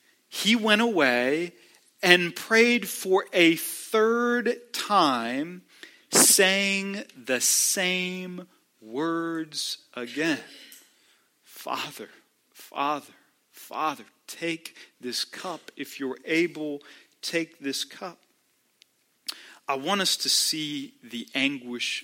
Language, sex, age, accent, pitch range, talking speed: English, male, 40-59, American, 130-195 Hz, 90 wpm